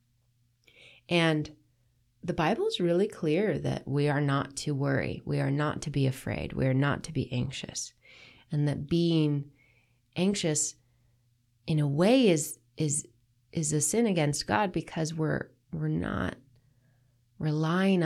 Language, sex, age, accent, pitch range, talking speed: English, female, 30-49, American, 125-165 Hz, 145 wpm